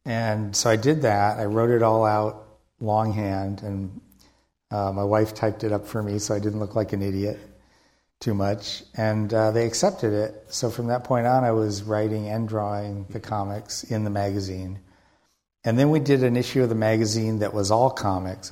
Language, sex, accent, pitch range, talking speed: English, male, American, 100-110 Hz, 200 wpm